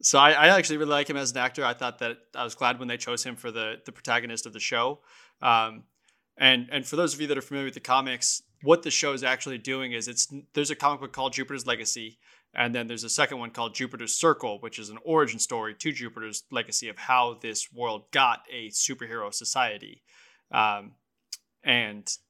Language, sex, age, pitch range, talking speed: English, male, 20-39, 115-135 Hz, 220 wpm